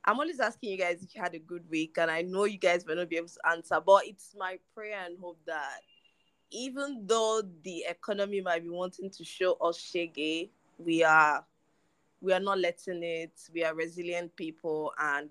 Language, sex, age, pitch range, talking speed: English, female, 20-39, 165-200 Hz, 205 wpm